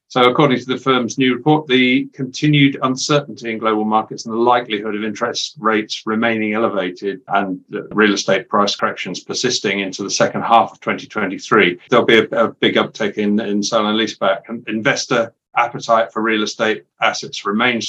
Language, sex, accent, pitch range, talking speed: English, male, British, 100-120 Hz, 180 wpm